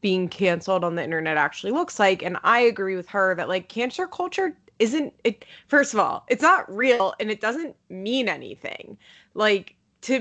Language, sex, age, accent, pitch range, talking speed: English, female, 20-39, American, 185-245 Hz, 190 wpm